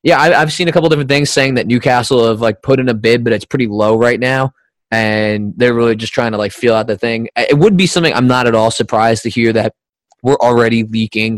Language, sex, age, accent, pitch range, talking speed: English, male, 20-39, American, 110-125 Hz, 255 wpm